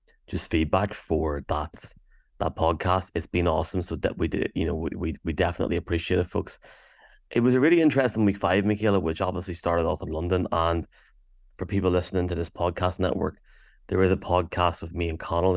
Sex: male